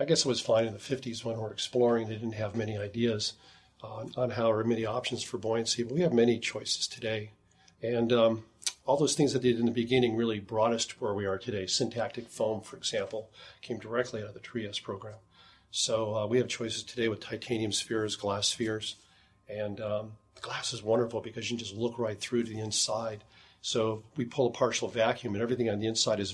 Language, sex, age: English, male, 40-59